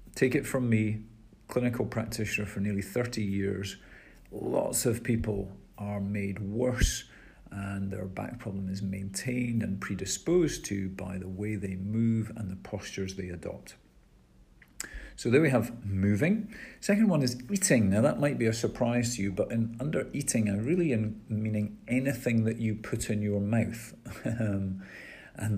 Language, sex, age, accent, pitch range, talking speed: English, male, 50-69, British, 100-120 Hz, 160 wpm